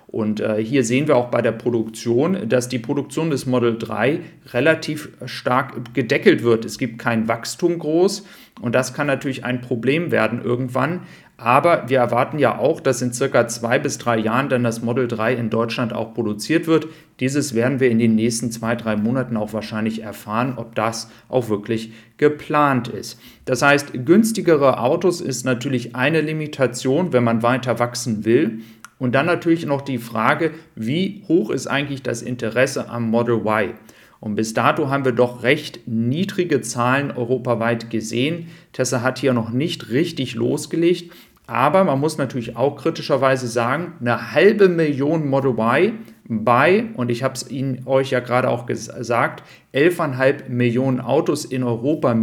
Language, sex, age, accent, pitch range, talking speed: German, male, 40-59, German, 120-150 Hz, 165 wpm